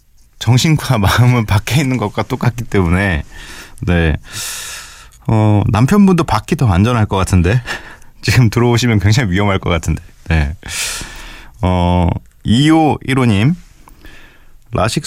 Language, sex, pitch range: Korean, male, 85-115 Hz